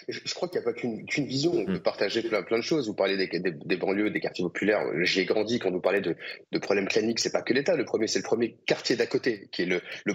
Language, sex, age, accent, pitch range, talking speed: French, male, 30-49, French, 115-165 Hz, 295 wpm